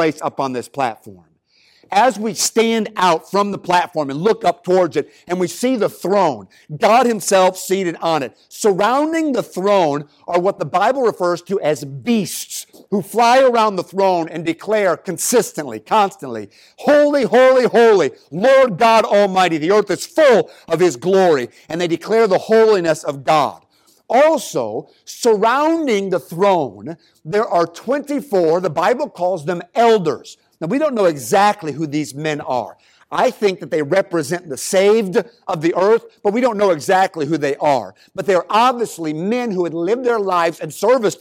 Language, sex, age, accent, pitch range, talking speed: English, male, 50-69, American, 165-225 Hz, 170 wpm